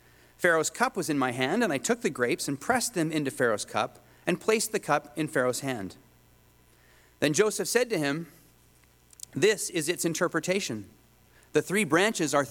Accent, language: American, English